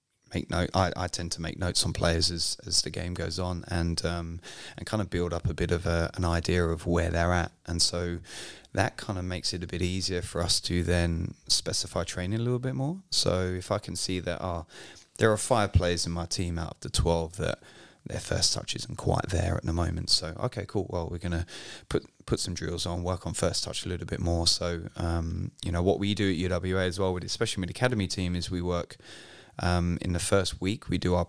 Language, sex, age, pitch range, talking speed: English, male, 20-39, 85-95 Hz, 245 wpm